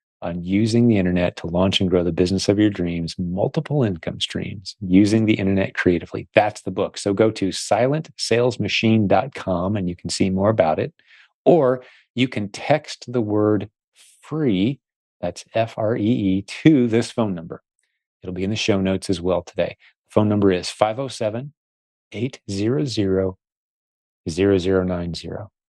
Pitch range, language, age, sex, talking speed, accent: 95-120 Hz, English, 40-59, male, 140 wpm, American